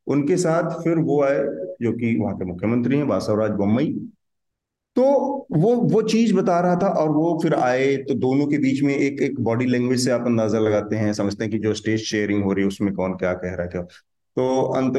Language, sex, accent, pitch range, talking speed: Hindi, male, native, 110-170 Hz, 215 wpm